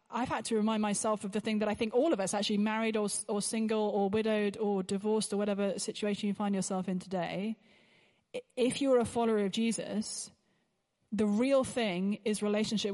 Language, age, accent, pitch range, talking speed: English, 20-39, British, 195-225 Hz, 195 wpm